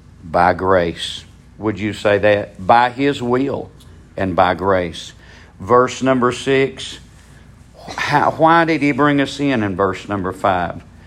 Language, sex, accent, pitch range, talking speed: English, male, American, 100-145 Hz, 135 wpm